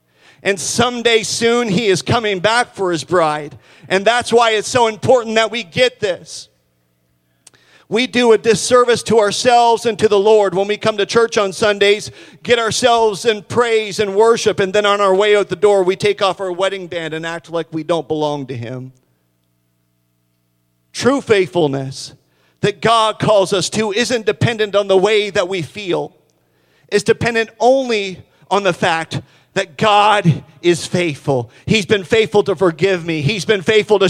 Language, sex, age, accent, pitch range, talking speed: English, male, 40-59, American, 135-210 Hz, 175 wpm